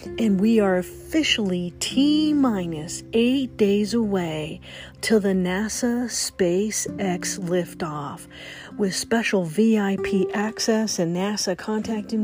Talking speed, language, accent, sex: 100 wpm, English, American, female